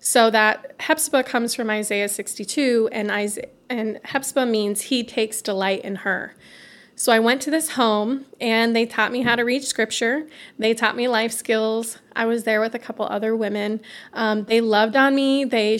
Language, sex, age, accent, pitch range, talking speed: English, female, 20-39, American, 210-245 Hz, 190 wpm